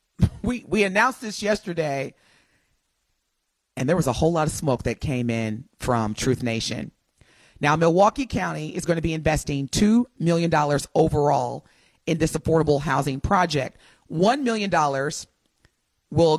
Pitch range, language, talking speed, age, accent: 150-195 Hz, English, 140 wpm, 30-49, American